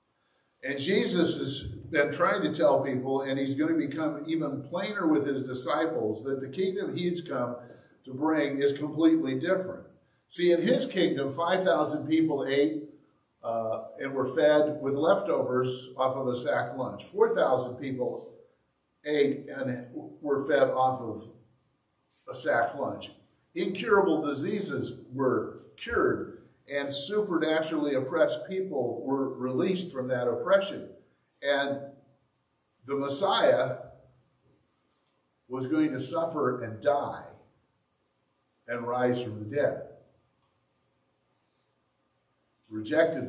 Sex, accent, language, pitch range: male, American, English, 130-160 Hz